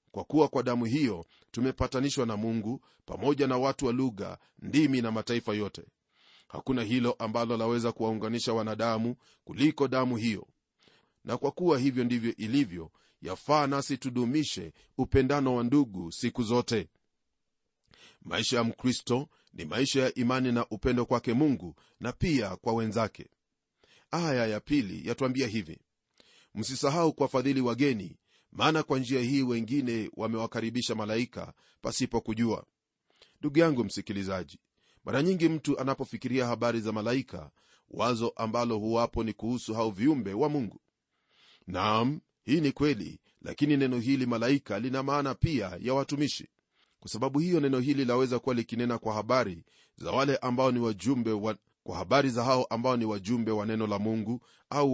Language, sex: Swahili, male